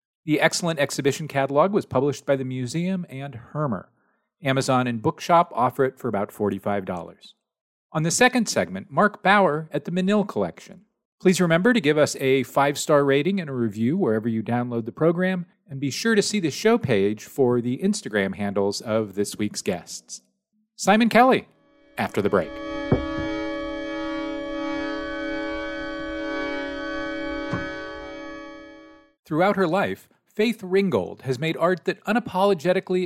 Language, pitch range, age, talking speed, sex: English, 130-200 Hz, 40-59, 140 wpm, male